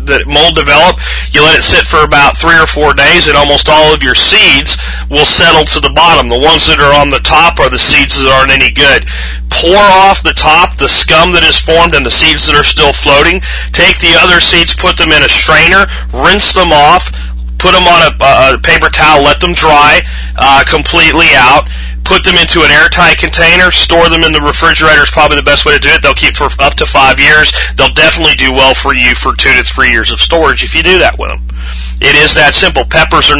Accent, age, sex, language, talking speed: American, 40-59, male, English, 235 wpm